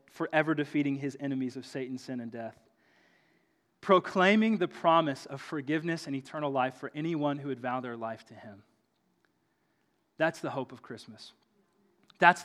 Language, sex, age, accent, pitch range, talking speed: English, male, 30-49, American, 135-185 Hz, 155 wpm